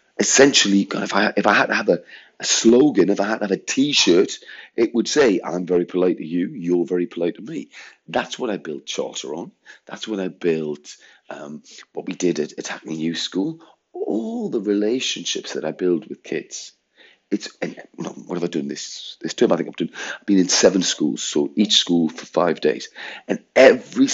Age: 40-59